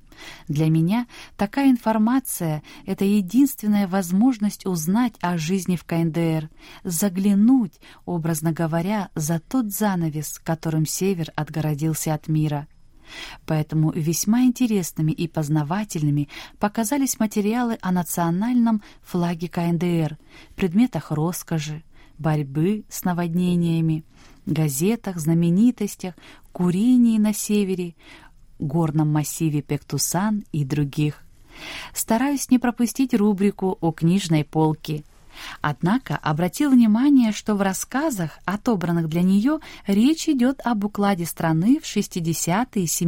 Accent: native